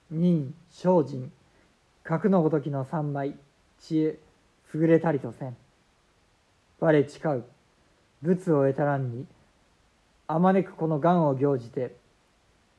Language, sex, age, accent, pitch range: Japanese, male, 50-69, native, 135-165 Hz